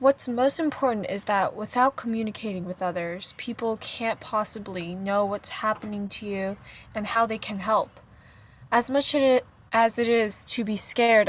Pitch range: 195-230 Hz